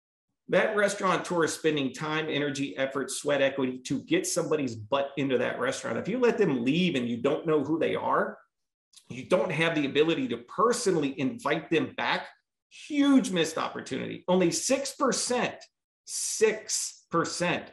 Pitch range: 135-180 Hz